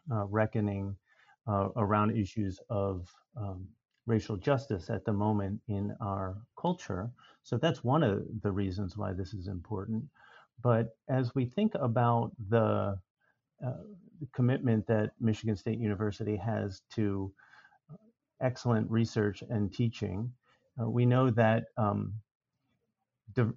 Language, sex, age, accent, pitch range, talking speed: English, male, 40-59, American, 105-120 Hz, 125 wpm